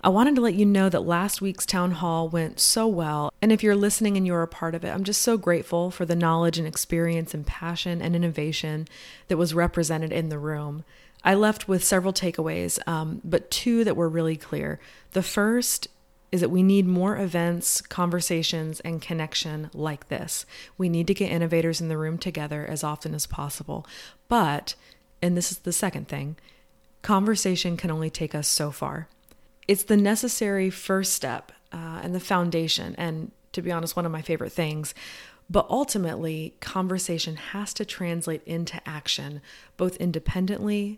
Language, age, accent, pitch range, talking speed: English, 30-49, American, 160-190 Hz, 180 wpm